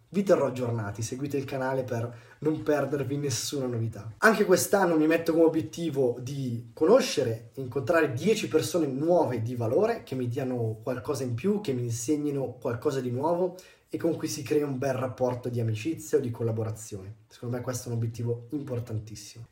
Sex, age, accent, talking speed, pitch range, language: male, 20-39, native, 175 wpm, 125-160 Hz, Italian